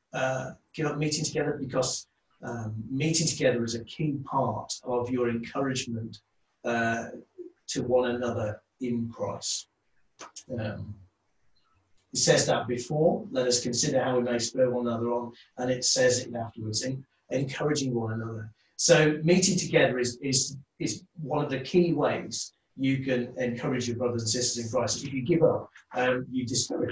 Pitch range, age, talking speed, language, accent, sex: 120-160 Hz, 40-59, 165 wpm, English, British, male